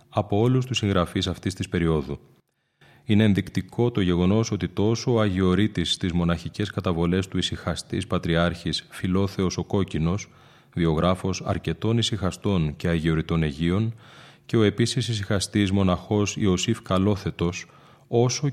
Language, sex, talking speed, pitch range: Greek, male, 125 wpm, 90-110 Hz